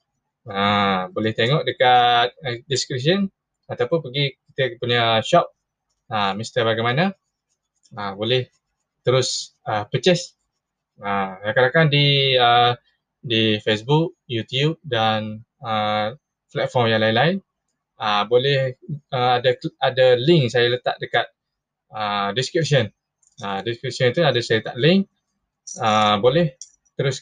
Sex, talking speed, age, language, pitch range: male, 115 wpm, 20-39, Malay, 110-160 Hz